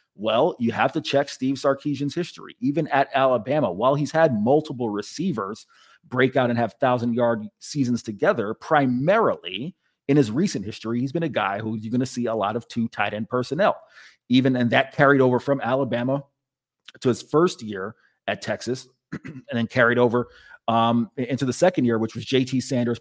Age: 30-49